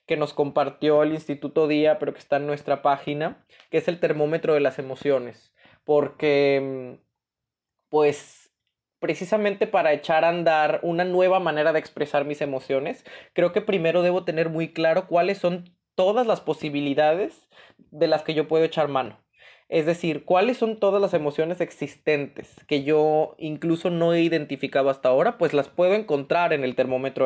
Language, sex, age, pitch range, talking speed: Spanish, male, 20-39, 145-175 Hz, 165 wpm